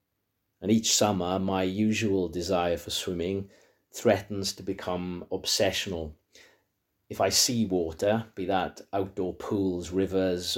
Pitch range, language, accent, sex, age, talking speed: 90-100 Hz, English, British, male, 40-59, 120 wpm